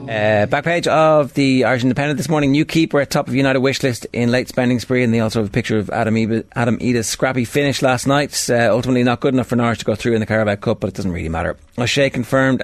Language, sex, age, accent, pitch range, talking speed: English, male, 30-49, Irish, 100-125 Hz, 260 wpm